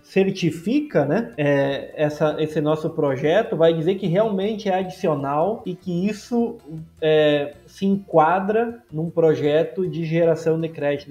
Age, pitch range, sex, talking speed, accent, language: 20-39, 150-195 Hz, male, 135 wpm, Brazilian, Portuguese